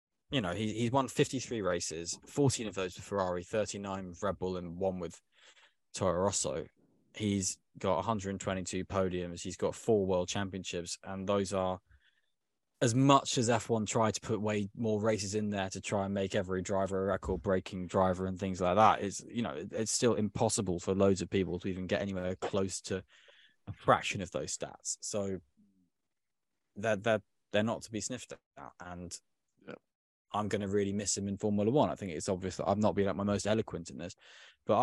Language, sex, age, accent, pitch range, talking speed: English, male, 20-39, British, 90-110 Hz, 205 wpm